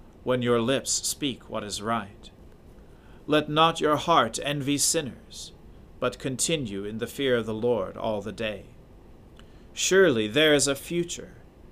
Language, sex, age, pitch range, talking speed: English, male, 40-59, 105-140 Hz, 150 wpm